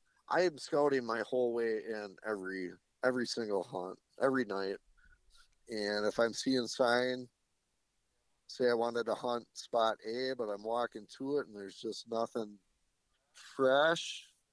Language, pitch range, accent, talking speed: English, 105-130 Hz, American, 145 wpm